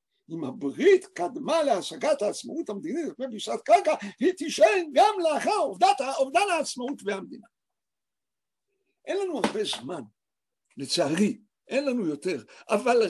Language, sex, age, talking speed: Hebrew, male, 60-79, 115 wpm